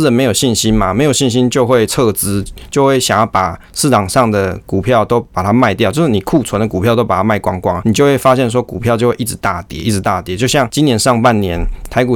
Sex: male